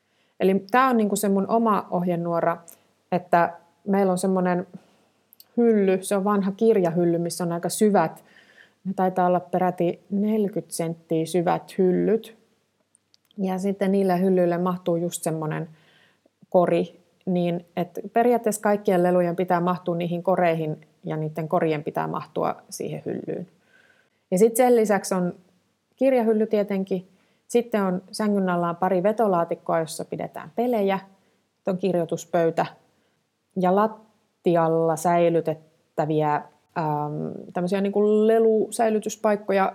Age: 30-49